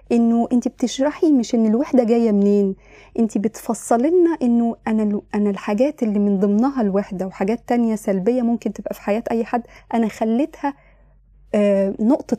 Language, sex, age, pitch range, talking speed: Arabic, female, 20-39, 205-255 Hz, 155 wpm